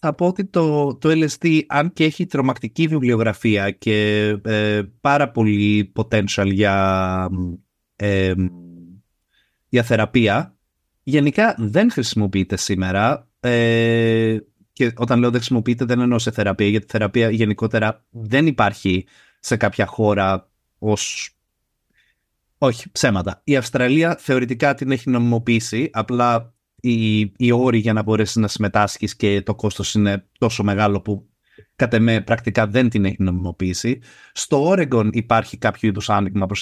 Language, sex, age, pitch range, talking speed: Greek, male, 30-49, 100-135 Hz, 130 wpm